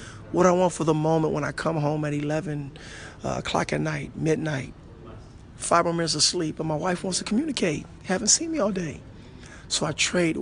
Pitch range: 140-170 Hz